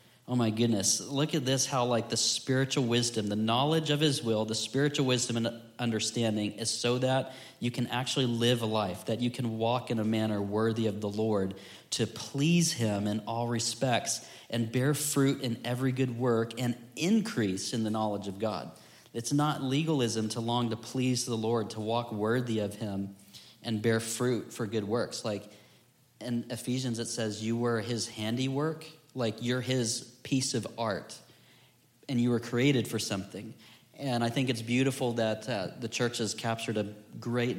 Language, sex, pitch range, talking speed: English, male, 110-125 Hz, 185 wpm